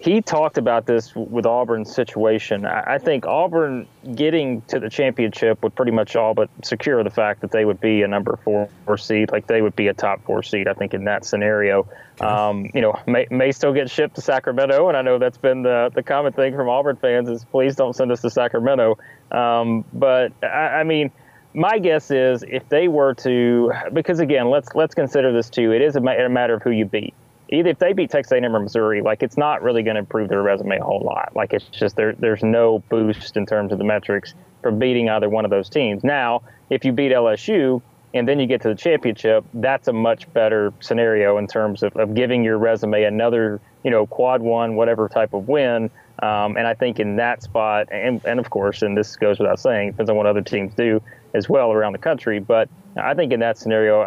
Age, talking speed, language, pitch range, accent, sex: 30-49, 230 wpm, English, 110-130 Hz, American, male